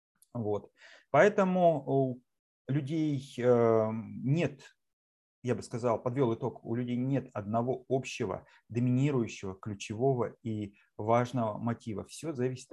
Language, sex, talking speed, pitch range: Russian, male, 105 wpm, 105-130 Hz